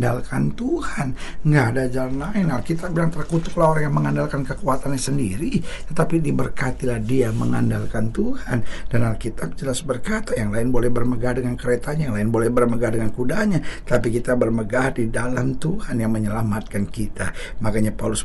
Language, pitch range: Indonesian, 110-145 Hz